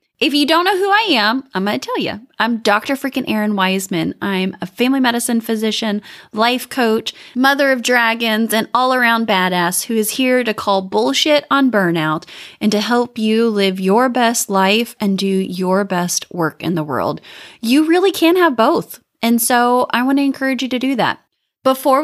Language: English